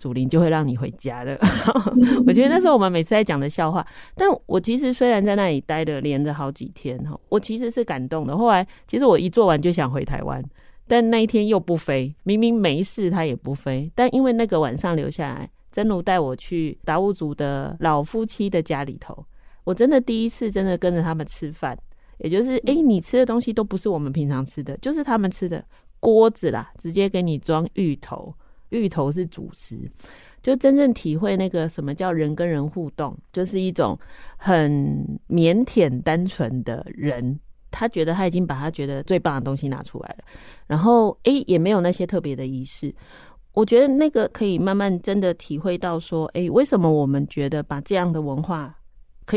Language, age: Chinese, 30-49